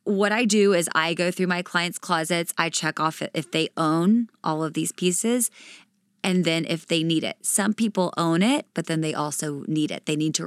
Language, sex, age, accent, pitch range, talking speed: English, female, 20-39, American, 160-205 Hz, 225 wpm